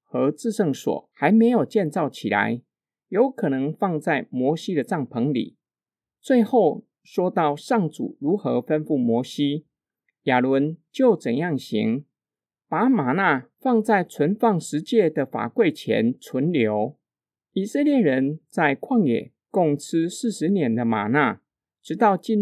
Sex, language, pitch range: male, Chinese, 145-225 Hz